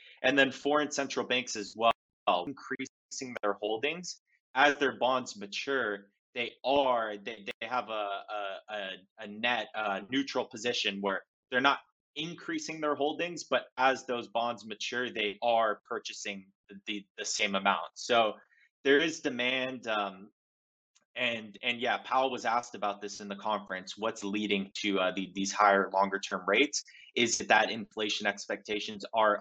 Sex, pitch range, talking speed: male, 100-125 Hz, 155 wpm